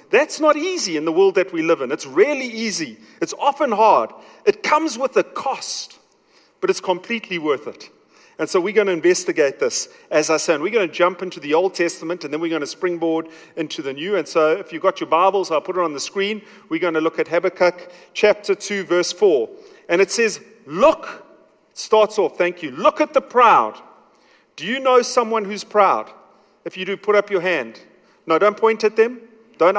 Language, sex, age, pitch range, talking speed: English, male, 40-59, 180-300 Hz, 210 wpm